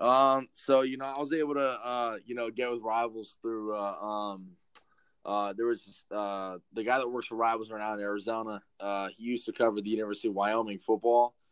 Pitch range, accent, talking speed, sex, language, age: 95-110 Hz, American, 215 wpm, male, English, 20-39